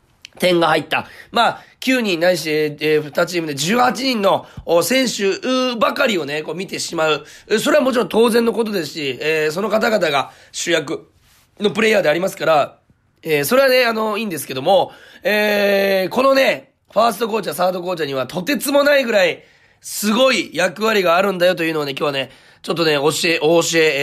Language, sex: Japanese, male